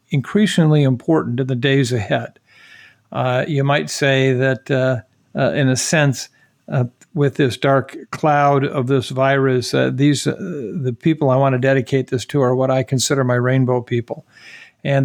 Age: 50-69